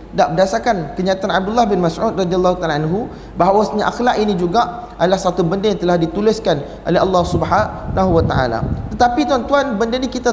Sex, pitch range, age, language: male, 175-225 Hz, 20-39, Malay